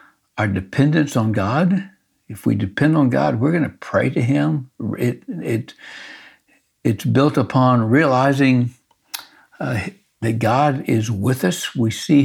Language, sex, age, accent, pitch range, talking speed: English, male, 60-79, American, 115-150 Hz, 130 wpm